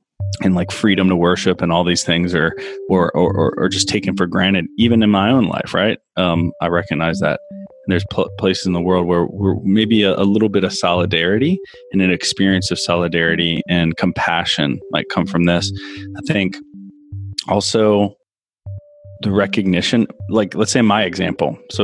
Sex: male